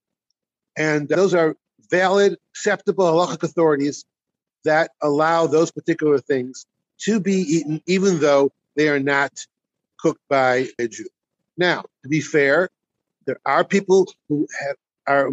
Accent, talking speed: American, 130 wpm